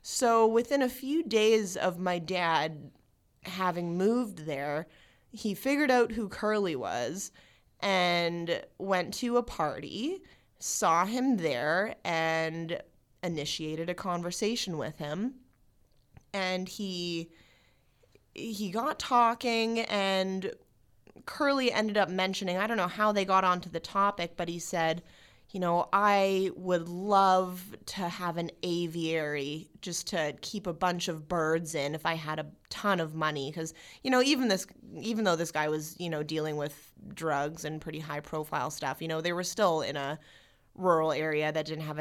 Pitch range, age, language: 155-195 Hz, 20-39, English